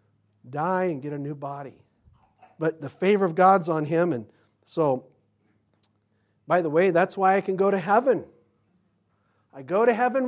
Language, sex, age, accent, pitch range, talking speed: English, male, 40-59, American, 145-210 Hz, 170 wpm